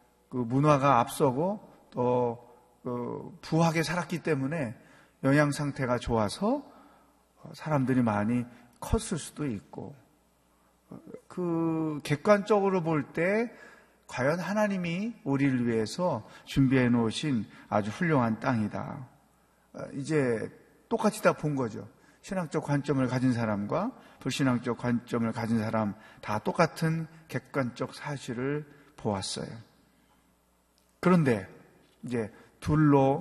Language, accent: Korean, native